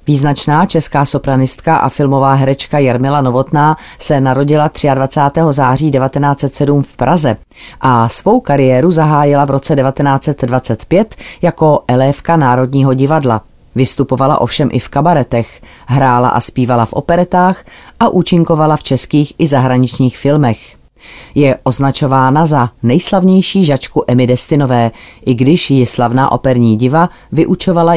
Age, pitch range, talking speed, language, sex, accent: 30-49, 125-150 Hz, 120 wpm, Czech, female, native